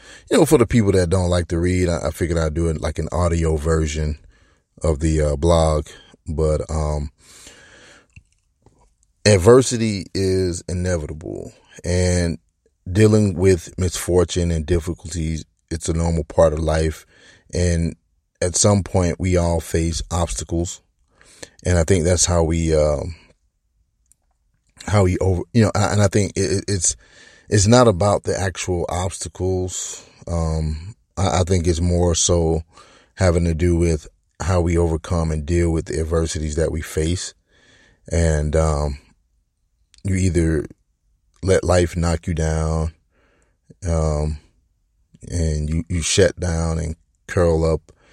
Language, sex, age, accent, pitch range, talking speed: English, male, 30-49, American, 80-90 Hz, 135 wpm